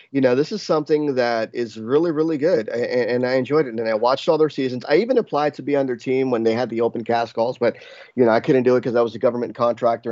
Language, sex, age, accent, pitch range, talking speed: English, male, 30-49, American, 115-150 Hz, 290 wpm